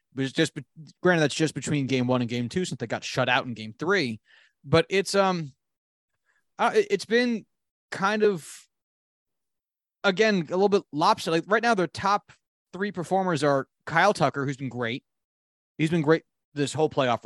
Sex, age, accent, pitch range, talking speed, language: male, 20-39, American, 130-200 Hz, 180 wpm, English